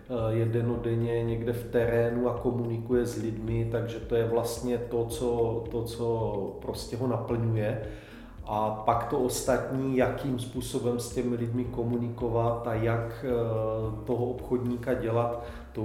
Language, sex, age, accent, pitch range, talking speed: Czech, male, 40-59, native, 110-120 Hz, 135 wpm